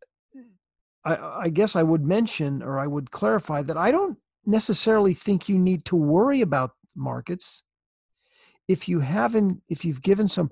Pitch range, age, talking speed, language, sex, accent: 140-195 Hz, 50-69, 160 wpm, English, male, American